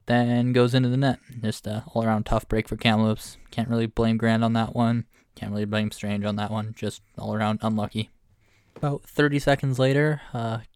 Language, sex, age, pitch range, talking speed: English, male, 10-29, 110-130 Hz, 190 wpm